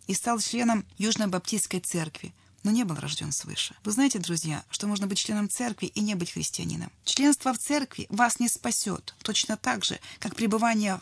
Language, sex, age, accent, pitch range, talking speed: Russian, female, 30-49, native, 190-250 Hz, 180 wpm